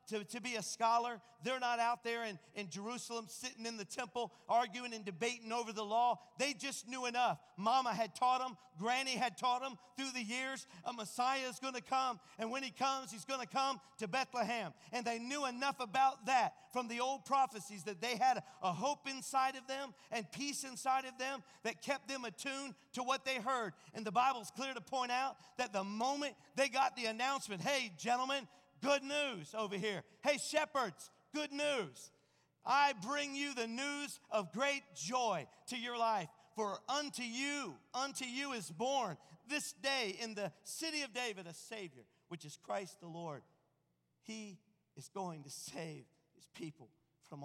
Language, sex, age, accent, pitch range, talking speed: English, male, 40-59, American, 195-265 Hz, 190 wpm